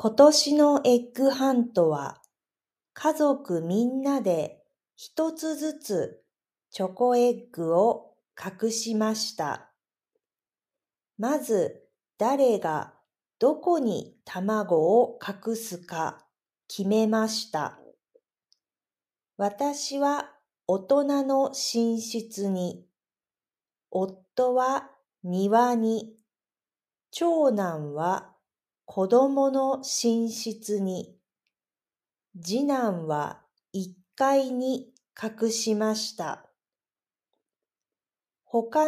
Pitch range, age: 195-270 Hz, 40-59